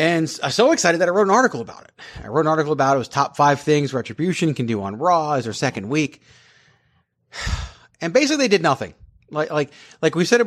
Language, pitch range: English, 115-160 Hz